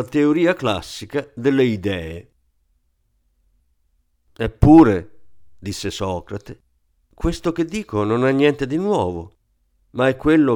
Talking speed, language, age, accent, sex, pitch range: 100 wpm, Italian, 50-69, native, male, 90-135 Hz